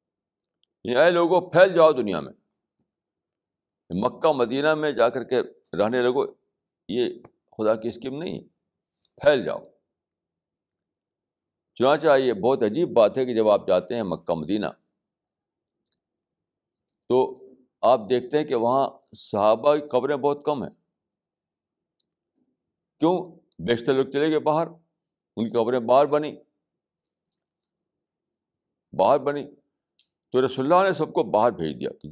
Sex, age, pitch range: male, 60-79, 115-160 Hz